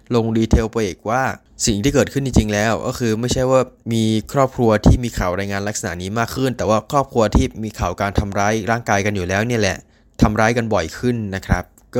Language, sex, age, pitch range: Thai, male, 20-39, 100-115 Hz